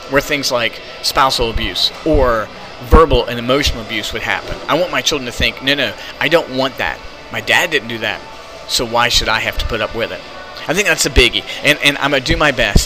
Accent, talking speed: American, 245 wpm